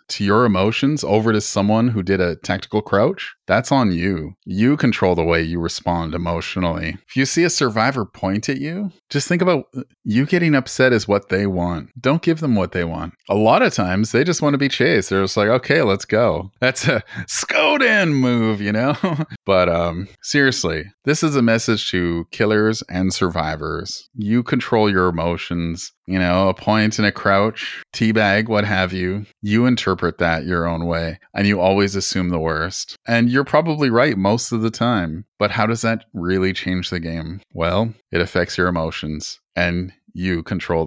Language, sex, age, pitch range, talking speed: English, male, 30-49, 90-120 Hz, 190 wpm